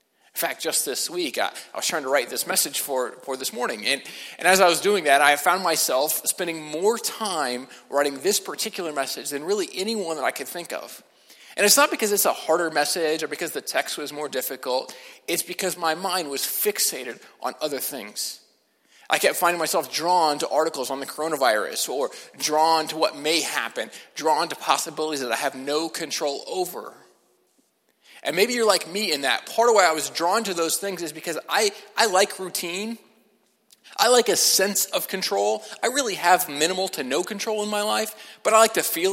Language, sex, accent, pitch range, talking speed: English, male, American, 150-205 Hz, 205 wpm